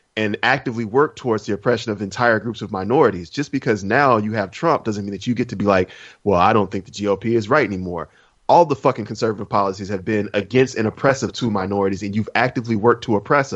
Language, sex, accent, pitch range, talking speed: English, male, American, 105-130 Hz, 230 wpm